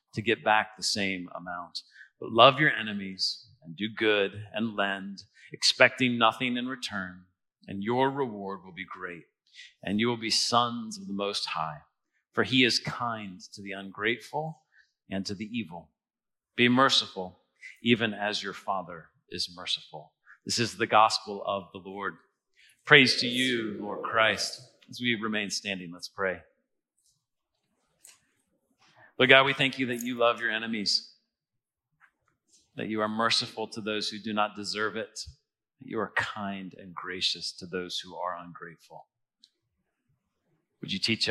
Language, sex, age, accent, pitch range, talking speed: English, male, 40-59, American, 100-125 Hz, 155 wpm